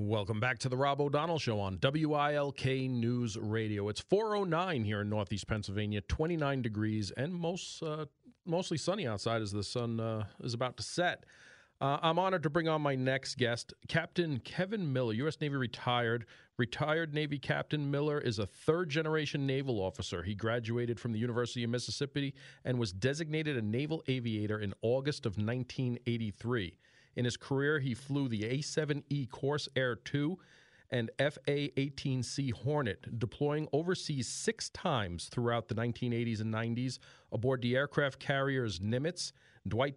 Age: 40-59